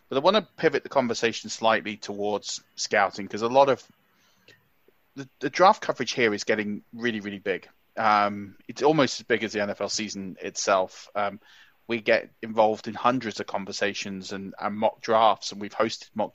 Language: English